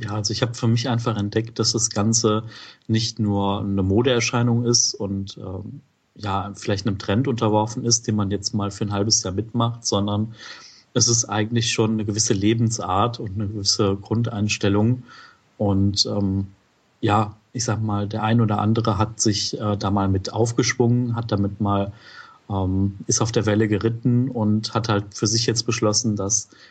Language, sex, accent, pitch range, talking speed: German, male, German, 100-115 Hz, 175 wpm